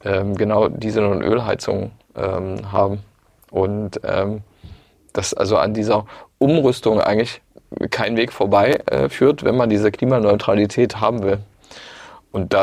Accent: German